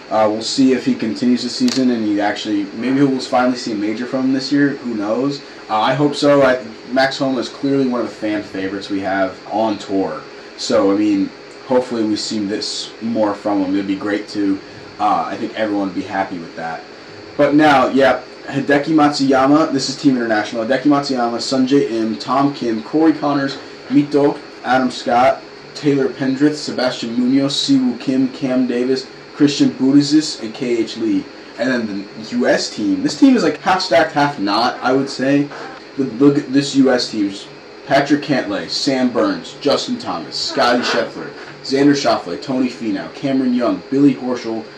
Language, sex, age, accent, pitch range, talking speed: English, male, 20-39, American, 115-145 Hz, 180 wpm